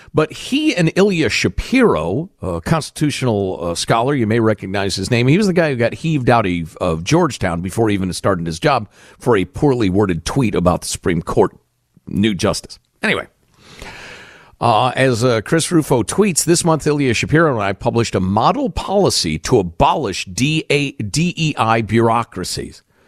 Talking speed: 160 wpm